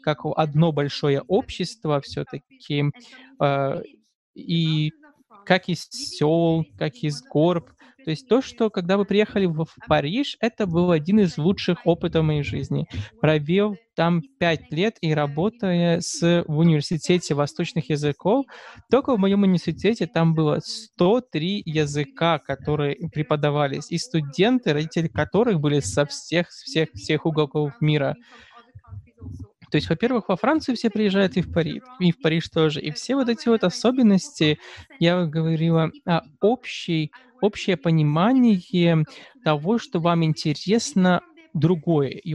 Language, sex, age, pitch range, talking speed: Russian, male, 20-39, 155-195 Hz, 135 wpm